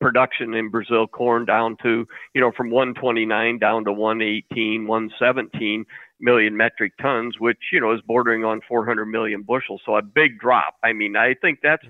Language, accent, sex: English, American, male